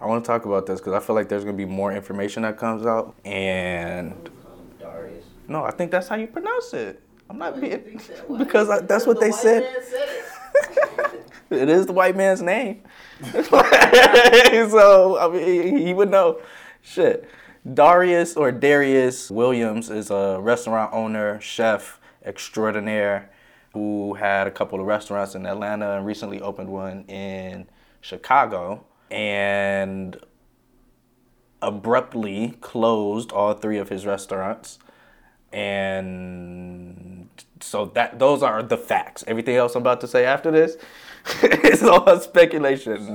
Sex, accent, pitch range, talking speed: male, American, 100-160 Hz, 135 wpm